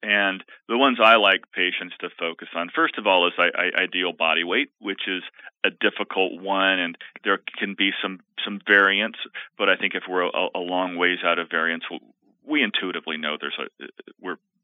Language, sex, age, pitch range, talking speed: English, male, 40-59, 95-110 Hz, 195 wpm